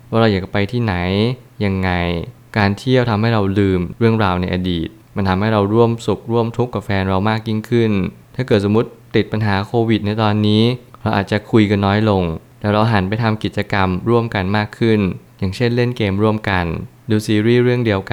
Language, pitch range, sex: Thai, 95-115 Hz, male